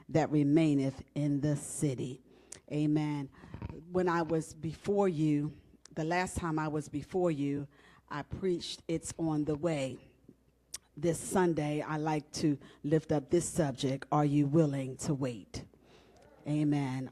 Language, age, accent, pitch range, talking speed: English, 40-59, American, 150-200 Hz, 135 wpm